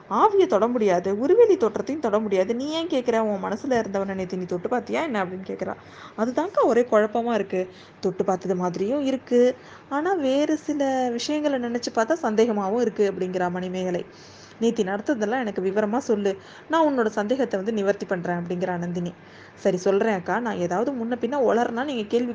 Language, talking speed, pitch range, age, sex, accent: Tamil, 160 wpm, 195-265 Hz, 20-39, female, native